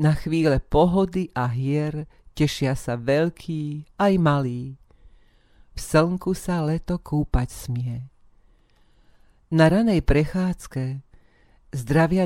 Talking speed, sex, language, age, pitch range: 100 wpm, female, Slovak, 40-59, 135-165 Hz